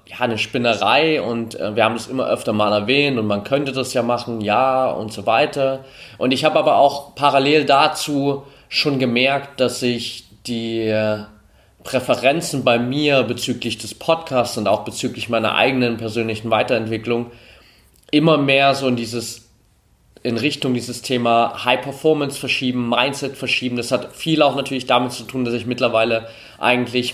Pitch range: 115-135 Hz